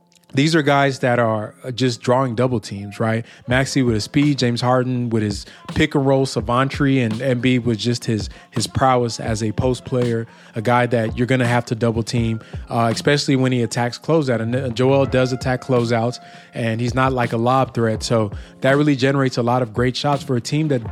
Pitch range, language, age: 115-135 Hz, English, 20-39